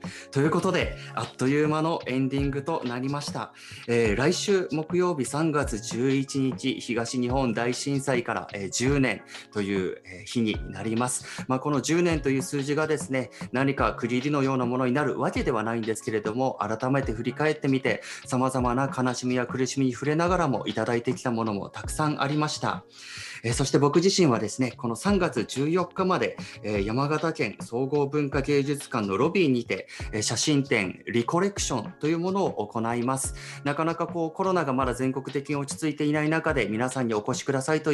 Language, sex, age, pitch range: Japanese, male, 30-49, 115-150 Hz